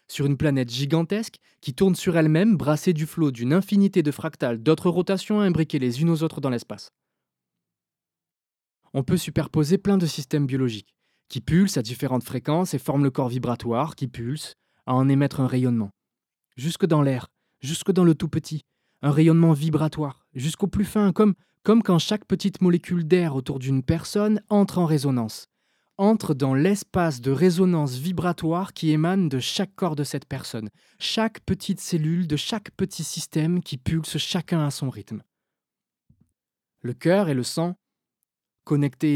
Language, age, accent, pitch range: French, 20-39, French, 140-190 Hz